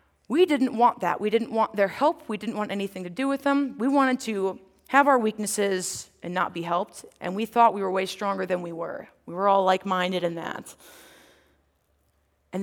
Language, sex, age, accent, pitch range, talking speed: English, female, 20-39, American, 175-225 Hz, 210 wpm